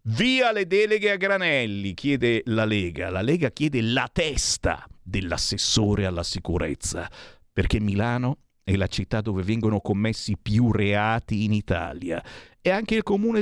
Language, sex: Italian, male